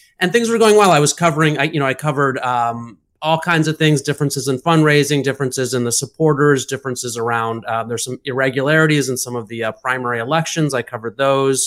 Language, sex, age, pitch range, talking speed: English, male, 30-49, 125-160 Hz, 210 wpm